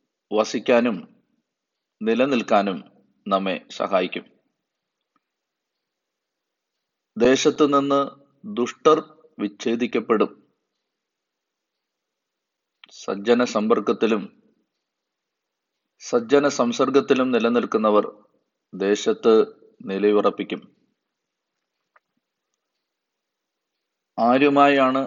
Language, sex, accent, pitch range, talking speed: Malayalam, male, native, 105-130 Hz, 40 wpm